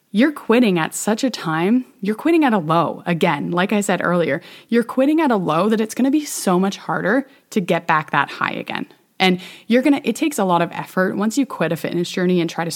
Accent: American